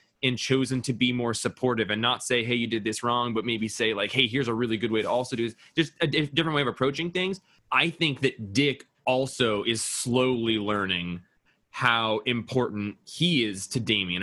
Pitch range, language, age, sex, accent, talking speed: 110-140 Hz, English, 20-39, male, American, 205 wpm